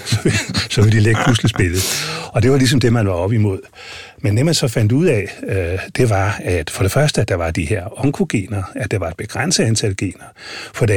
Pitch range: 100-130 Hz